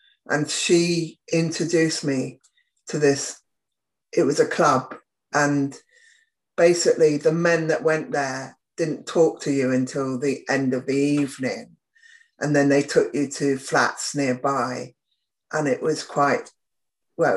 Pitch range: 140-180 Hz